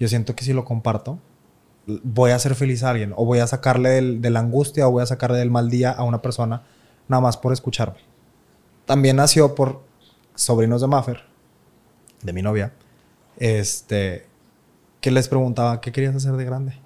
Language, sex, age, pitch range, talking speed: Spanish, male, 20-39, 115-140 Hz, 180 wpm